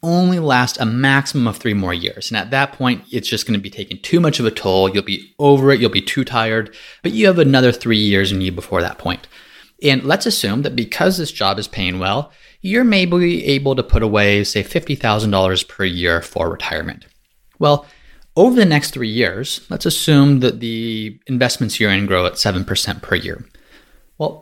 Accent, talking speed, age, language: American, 205 wpm, 30-49, English